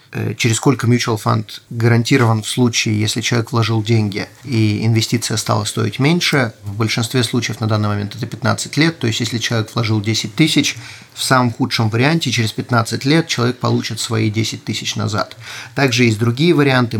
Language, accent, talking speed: Russian, native, 175 wpm